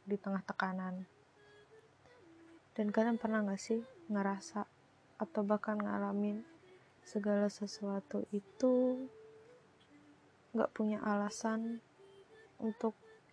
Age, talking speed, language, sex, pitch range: 20-39, 85 wpm, Indonesian, female, 200-255 Hz